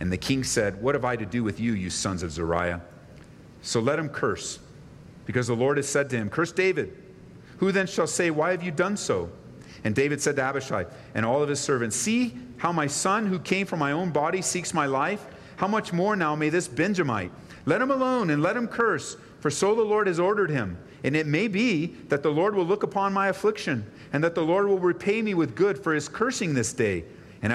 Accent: American